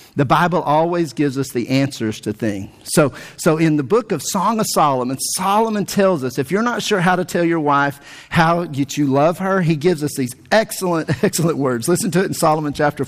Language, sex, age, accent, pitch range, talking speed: English, male, 50-69, American, 150-225 Hz, 215 wpm